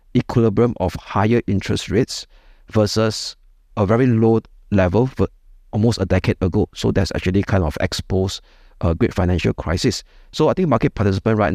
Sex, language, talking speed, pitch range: male, English, 160 wpm, 90-110 Hz